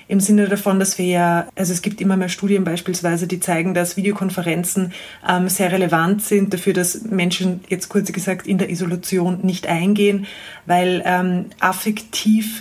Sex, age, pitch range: female, 30-49, 185-205 Hz